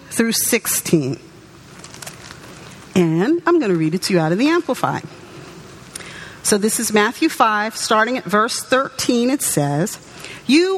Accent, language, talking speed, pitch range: American, English, 145 wpm, 190-275 Hz